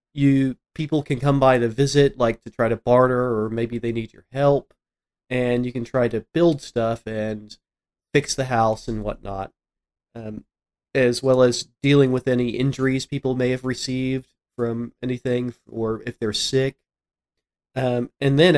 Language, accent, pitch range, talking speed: English, American, 115-135 Hz, 170 wpm